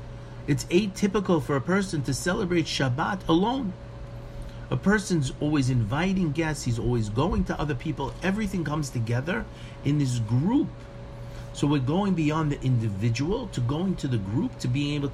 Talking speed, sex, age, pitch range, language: 160 wpm, male, 50-69, 120-170 Hz, English